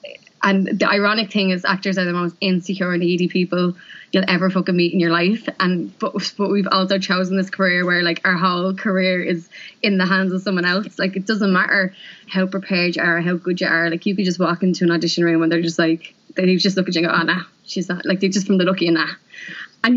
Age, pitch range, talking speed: 20-39, 175-200 Hz, 260 wpm